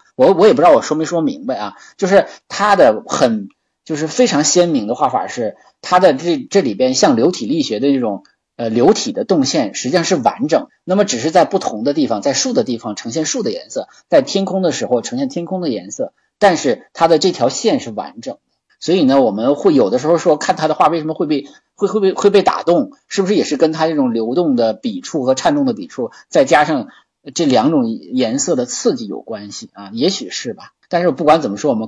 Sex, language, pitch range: male, Chinese, 120-200 Hz